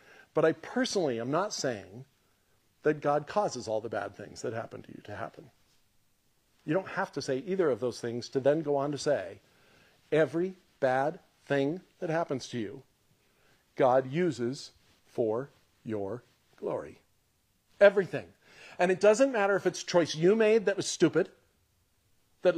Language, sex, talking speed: English, male, 160 wpm